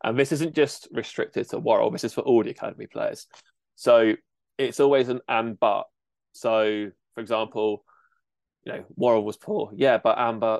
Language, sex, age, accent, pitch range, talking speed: English, male, 20-39, British, 105-130 Hz, 175 wpm